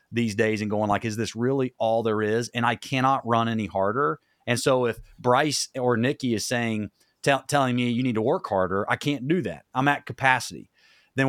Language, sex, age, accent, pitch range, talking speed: English, male, 40-59, American, 115-150 Hz, 215 wpm